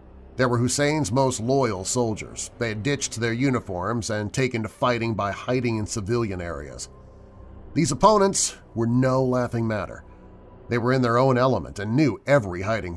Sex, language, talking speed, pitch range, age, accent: male, English, 165 wpm, 90-120 Hz, 40-59, American